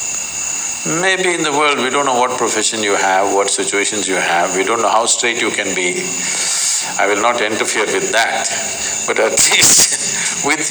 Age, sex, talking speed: 50-69, male, 185 wpm